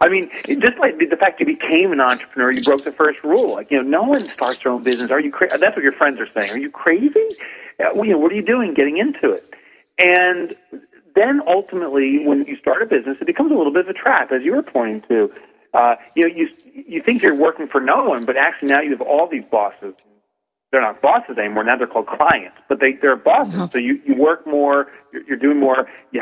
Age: 40-59